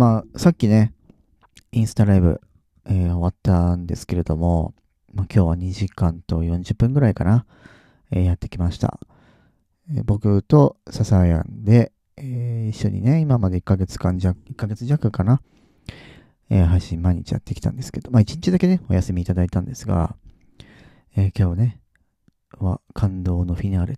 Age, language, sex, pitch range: 40-59, Japanese, male, 90-125 Hz